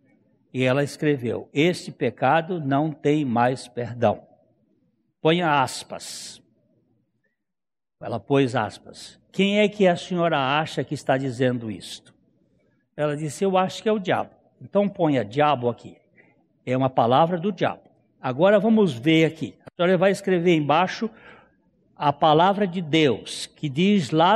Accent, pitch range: Brazilian, 150-215 Hz